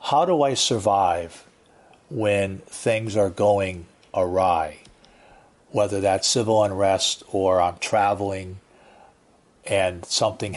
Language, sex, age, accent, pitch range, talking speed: English, male, 50-69, American, 95-110 Hz, 100 wpm